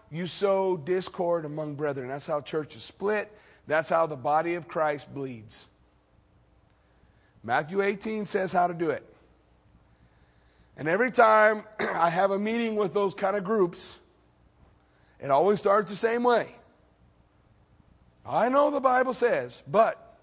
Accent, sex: American, male